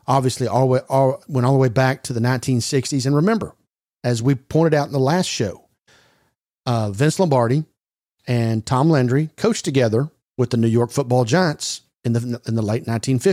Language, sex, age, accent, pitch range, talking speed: English, male, 50-69, American, 115-140 Hz, 190 wpm